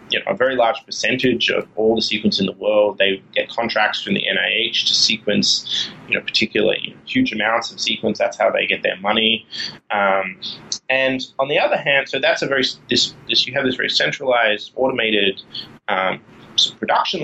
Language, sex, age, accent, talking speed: English, male, 20-39, Australian, 190 wpm